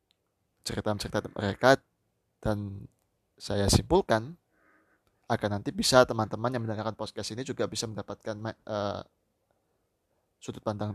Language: Indonesian